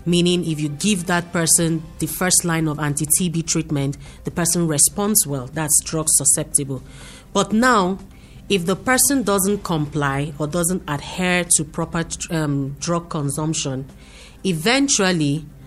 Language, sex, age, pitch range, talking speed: English, female, 40-59, 145-180 Hz, 140 wpm